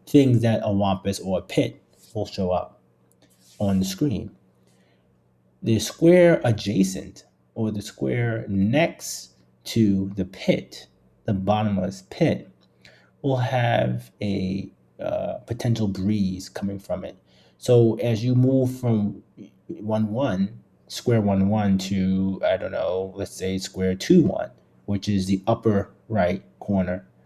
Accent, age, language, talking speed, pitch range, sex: American, 30-49, English, 130 wpm, 95-110 Hz, male